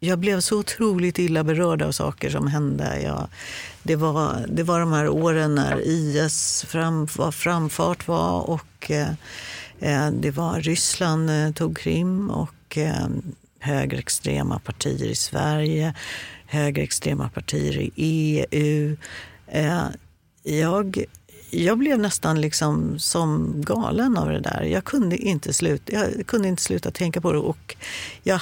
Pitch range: 150-200 Hz